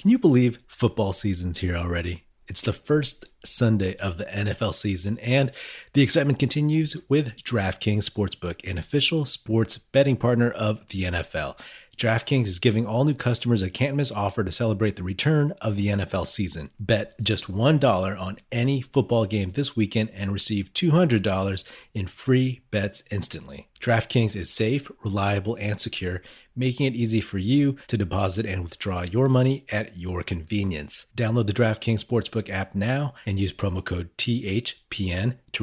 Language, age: English, 30-49